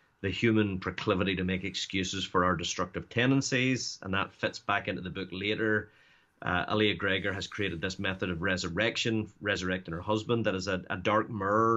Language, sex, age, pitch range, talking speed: English, male, 30-49, 95-115 Hz, 185 wpm